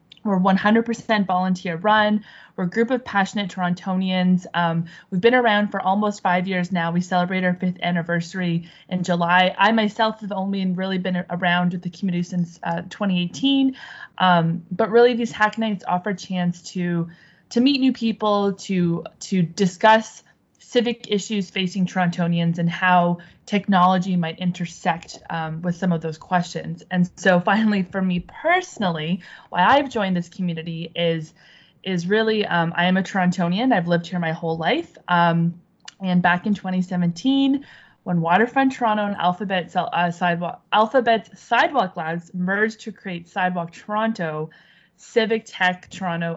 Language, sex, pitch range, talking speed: English, female, 175-210 Hz, 155 wpm